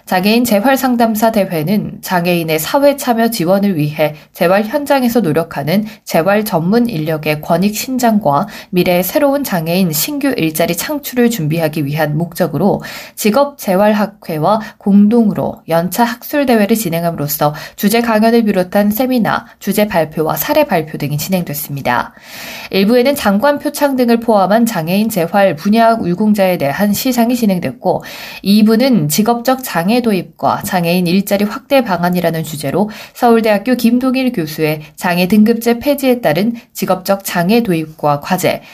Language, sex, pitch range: Korean, female, 175-230 Hz